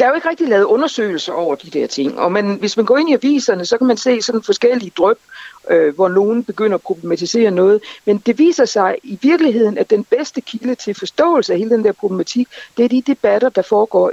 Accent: native